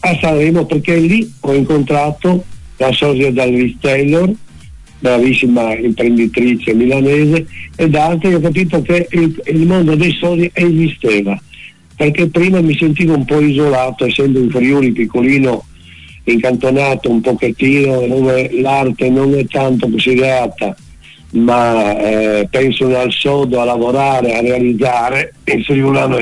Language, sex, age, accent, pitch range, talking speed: Italian, male, 60-79, native, 115-140 Hz, 130 wpm